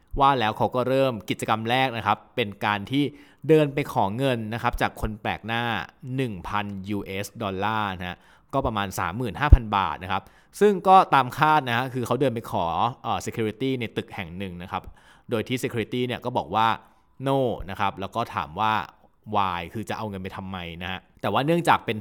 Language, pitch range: Thai, 100-135 Hz